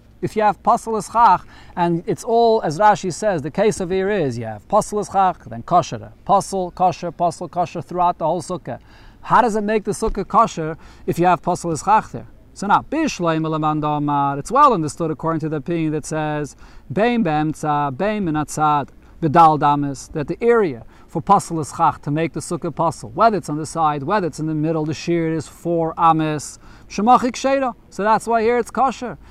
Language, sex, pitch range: English, male, 155-210 Hz